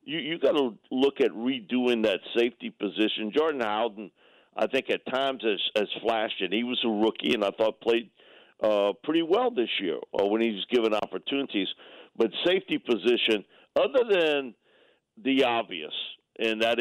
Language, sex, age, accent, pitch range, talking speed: English, male, 50-69, American, 110-160 Hz, 170 wpm